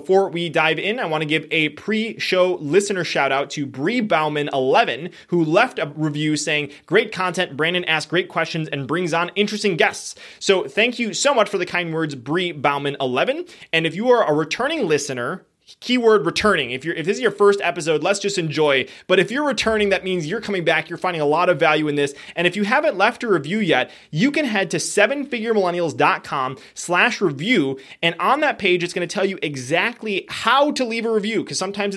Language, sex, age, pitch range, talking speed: English, male, 20-39, 155-205 Hz, 215 wpm